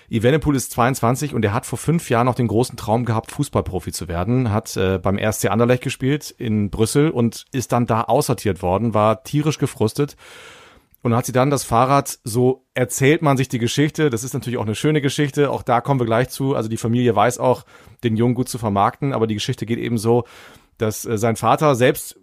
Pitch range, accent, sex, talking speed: 110-135 Hz, German, male, 215 wpm